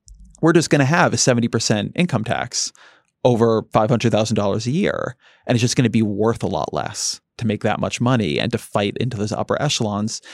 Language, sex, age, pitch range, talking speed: English, male, 30-49, 105-125 Hz, 205 wpm